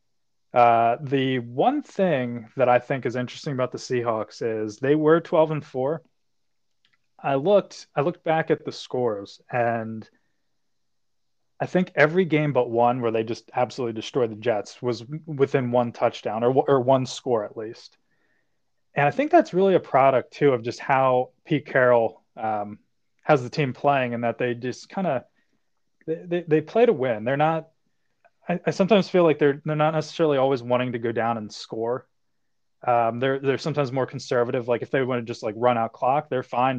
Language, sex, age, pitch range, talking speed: English, male, 20-39, 120-155 Hz, 190 wpm